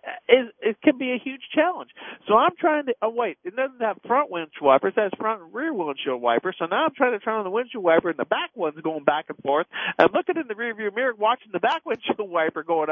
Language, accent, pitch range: English, American, 190-295 Hz